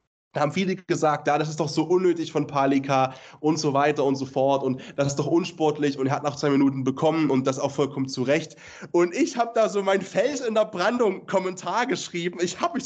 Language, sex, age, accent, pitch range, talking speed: German, male, 20-39, German, 180-240 Hz, 245 wpm